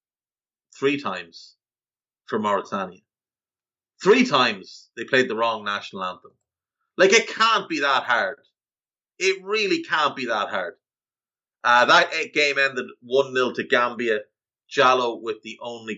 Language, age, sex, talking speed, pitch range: English, 30-49, male, 135 wpm, 105-135 Hz